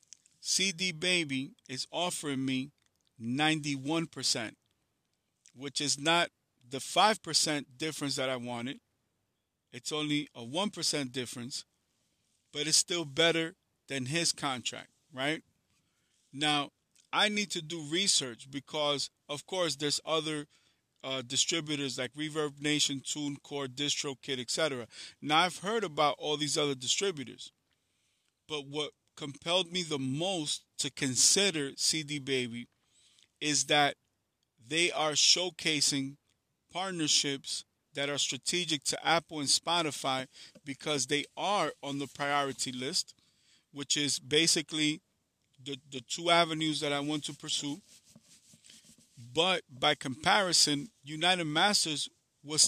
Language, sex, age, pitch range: English, male, 50-69, 135-160 Hz